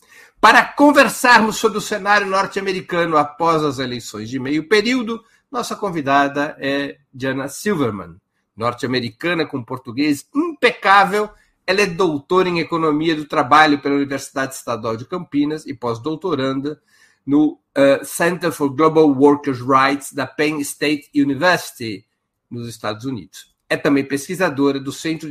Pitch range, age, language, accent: 140-195 Hz, 50-69, Portuguese, Brazilian